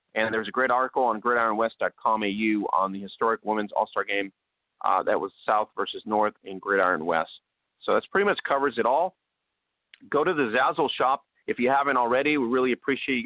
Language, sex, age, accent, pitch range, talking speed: English, male, 30-49, American, 105-130 Hz, 195 wpm